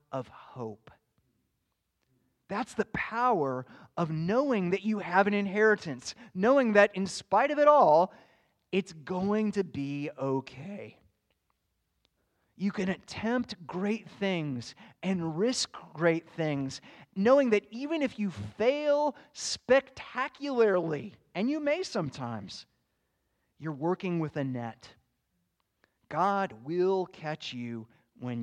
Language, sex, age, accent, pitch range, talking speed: English, male, 30-49, American, 130-215 Hz, 115 wpm